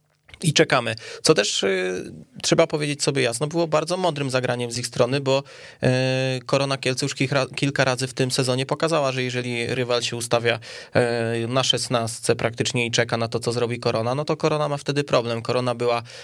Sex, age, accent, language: male, 20-39, native, Polish